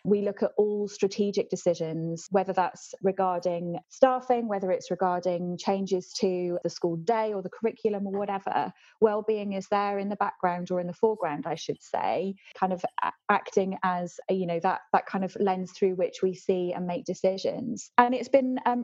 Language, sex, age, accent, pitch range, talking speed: English, female, 20-39, British, 180-215 Hz, 185 wpm